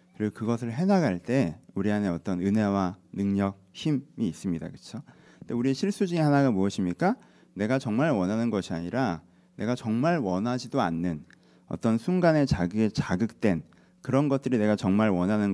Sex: male